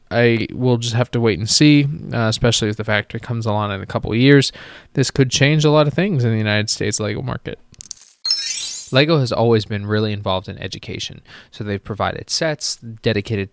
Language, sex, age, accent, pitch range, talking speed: English, male, 20-39, American, 105-120 Hz, 205 wpm